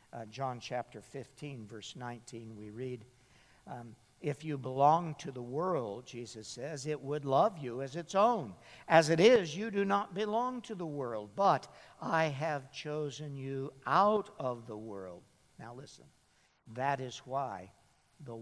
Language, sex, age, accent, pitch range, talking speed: English, male, 60-79, American, 115-165 Hz, 160 wpm